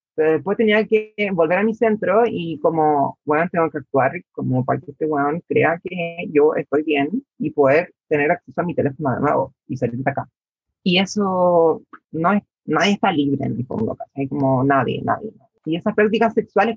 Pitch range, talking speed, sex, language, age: 175-230 Hz, 195 wpm, female, Spanish, 30-49